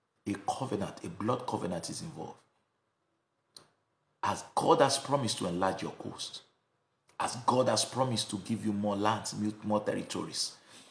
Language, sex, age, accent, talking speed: English, male, 50-69, Nigerian, 145 wpm